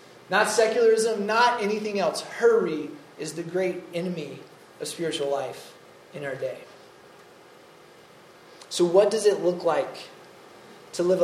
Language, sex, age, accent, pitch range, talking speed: English, male, 20-39, American, 165-195 Hz, 130 wpm